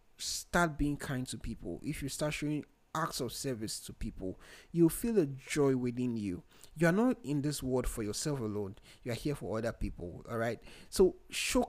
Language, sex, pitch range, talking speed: English, male, 120-155 Hz, 195 wpm